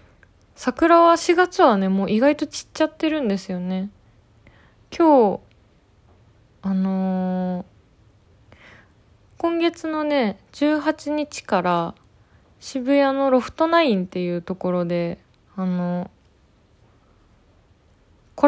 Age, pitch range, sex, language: 20-39, 180-275 Hz, female, Japanese